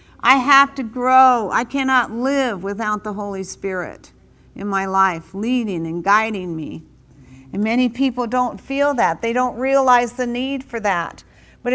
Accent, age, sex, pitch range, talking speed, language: American, 50-69, female, 215-270 Hz, 165 wpm, English